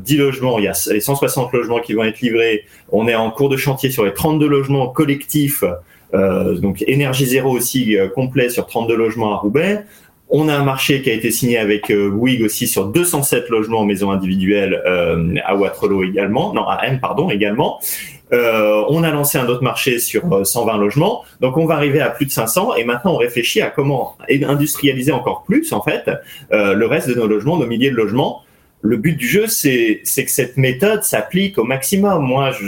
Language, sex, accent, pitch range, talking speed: French, male, French, 110-150 Hz, 210 wpm